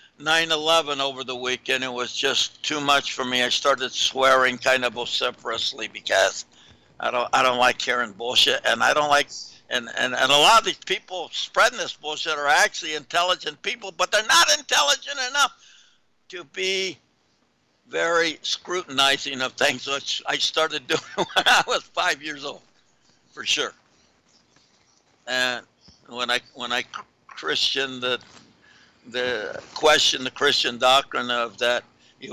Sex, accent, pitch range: male, American, 125-170 Hz